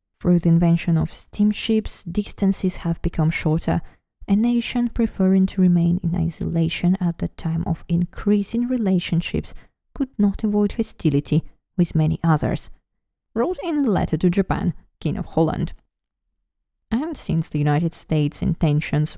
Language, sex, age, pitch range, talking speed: English, female, 20-39, 165-230 Hz, 140 wpm